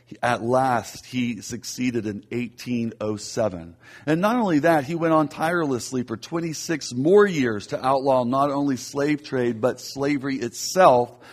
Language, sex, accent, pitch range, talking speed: English, male, American, 120-160 Hz, 145 wpm